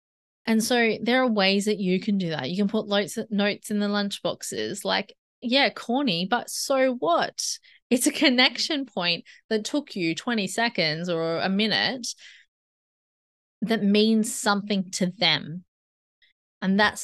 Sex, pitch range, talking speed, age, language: female, 180-220 Hz, 155 wpm, 20-39, English